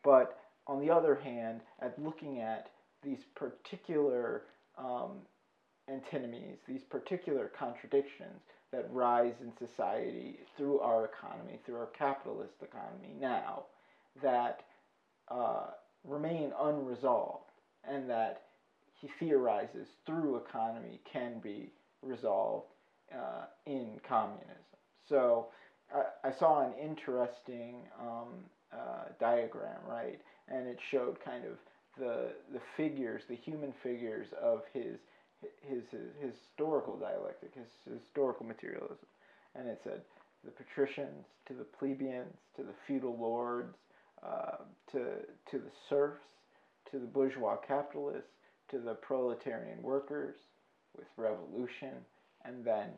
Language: English